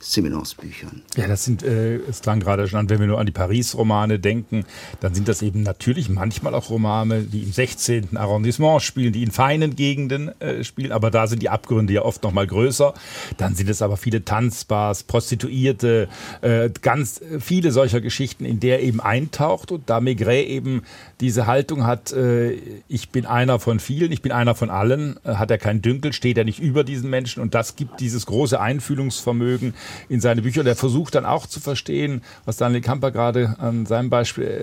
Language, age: German, 50-69